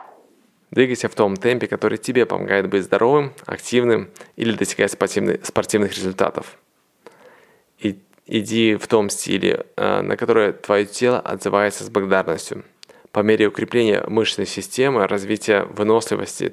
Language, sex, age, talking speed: Russian, male, 20-39, 115 wpm